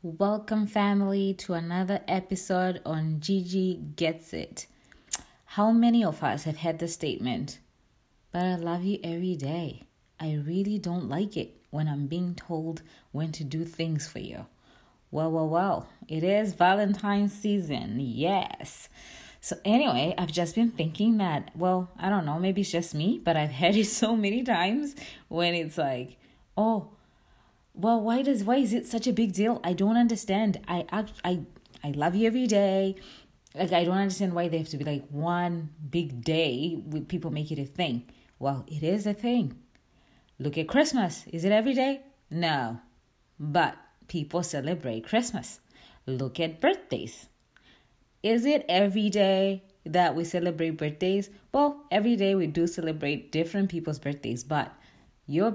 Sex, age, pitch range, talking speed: female, 20-39, 160-205 Hz, 160 wpm